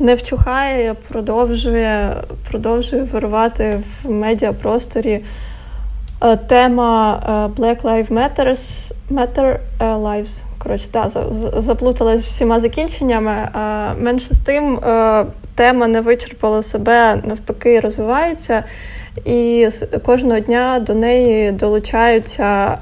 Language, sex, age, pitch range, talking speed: Ukrainian, female, 20-39, 220-245 Hz, 90 wpm